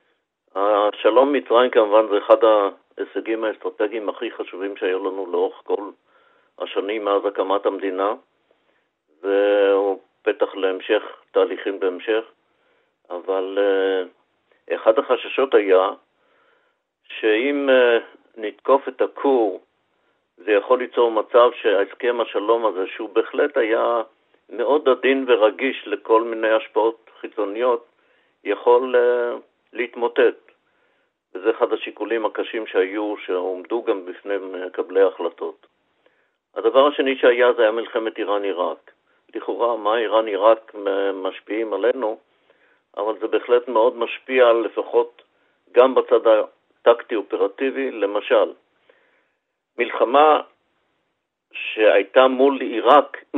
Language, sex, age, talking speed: Hebrew, male, 50-69, 95 wpm